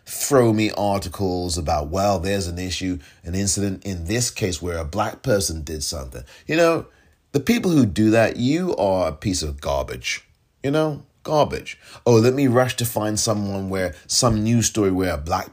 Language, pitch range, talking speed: English, 85-115 Hz, 190 wpm